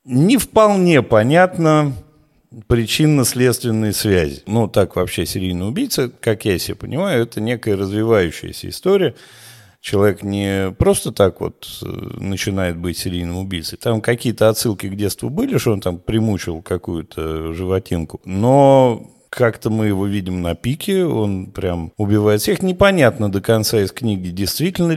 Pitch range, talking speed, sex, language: 95-135 Hz, 135 wpm, male, Russian